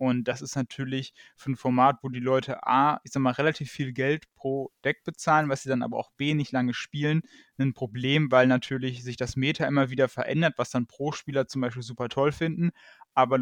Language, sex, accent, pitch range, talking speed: German, male, German, 125-150 Hz, 220 wpm